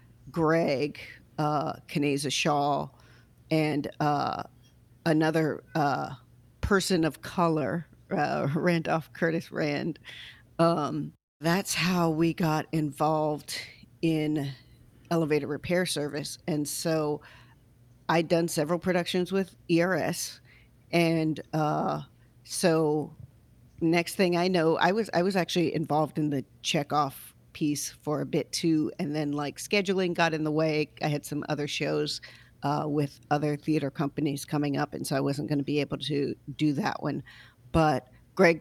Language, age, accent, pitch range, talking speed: English, 40-59, American, 140-170 Hz, 135 wpm